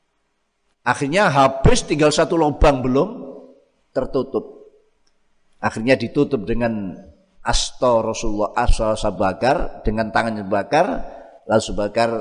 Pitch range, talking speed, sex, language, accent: 110-155 Hz, 95 wpm, male, Indonesian, native